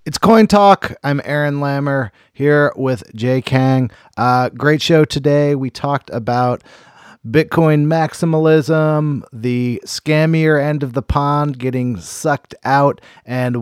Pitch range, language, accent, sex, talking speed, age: 115-145 Hz, English, American, male, 130 wpm, 30-49